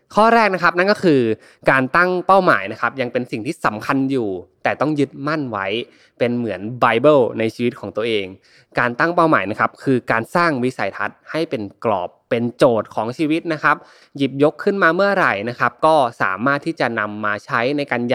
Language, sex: Thai, male